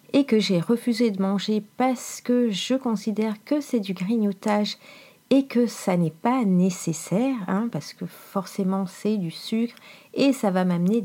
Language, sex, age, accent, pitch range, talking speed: French, female, 40-59, French, 190-245 Hz, 170 wpm